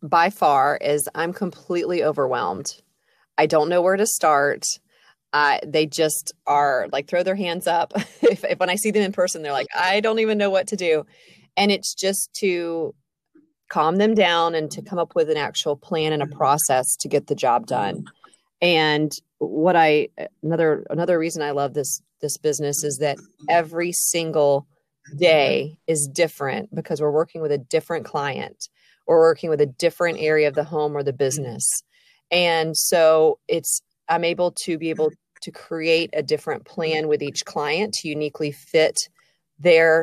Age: 30-49